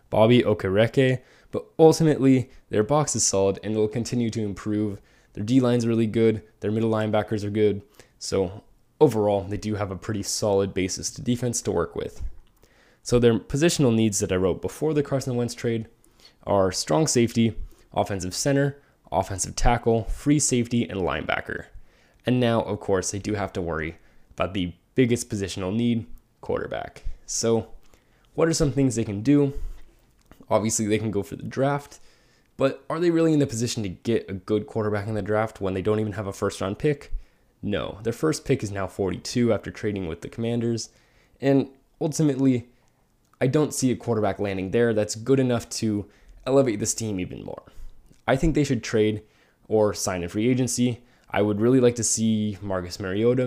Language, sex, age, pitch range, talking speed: English, male, 20-39, 105-125 Hz, 180 wpm